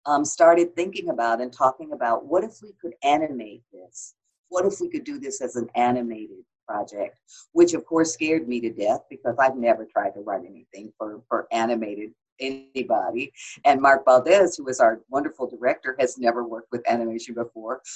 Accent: American